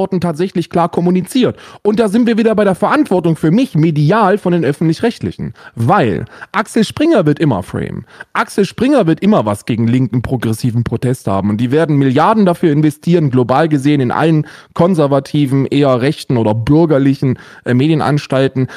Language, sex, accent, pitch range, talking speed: German, male, German, 130-195 Hz, 160 wpm